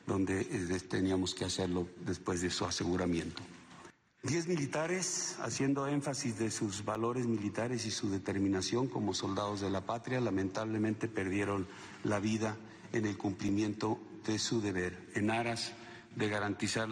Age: 50-69